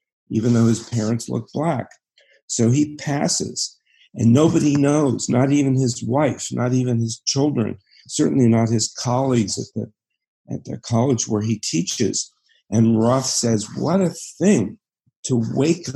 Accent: American